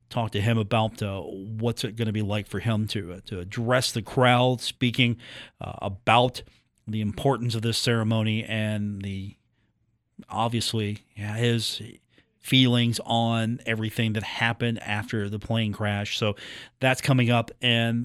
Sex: male